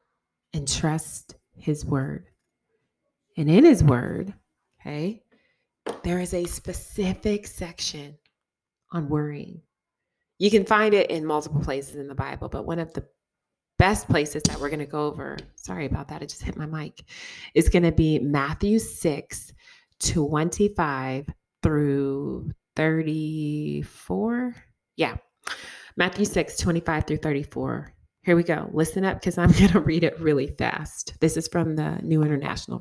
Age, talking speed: 30-49, 145 wpm